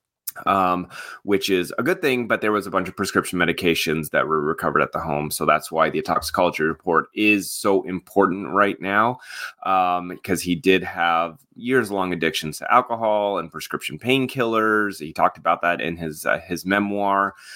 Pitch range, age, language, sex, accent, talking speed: 85-105 Hz, 30-49, English, male, American, 180 wpm